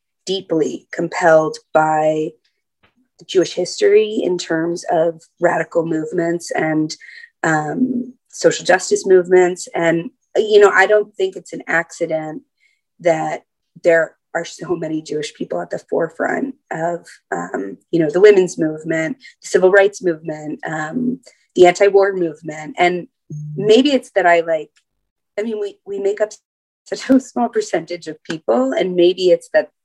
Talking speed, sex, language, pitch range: 145 wpm, female, English, 160-210 Hz